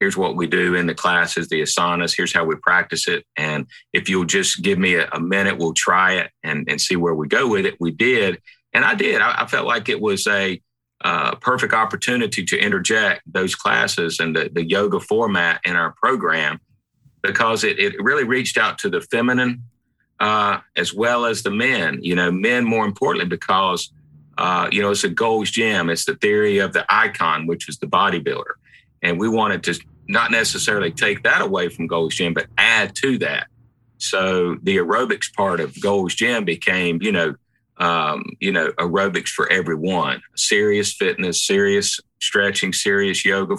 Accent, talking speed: American, 190 wpm